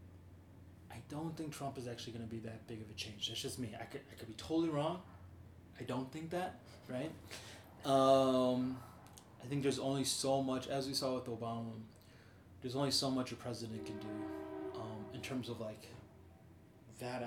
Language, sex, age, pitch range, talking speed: English, male, 20-39, 105-125 Hz, 190 wpm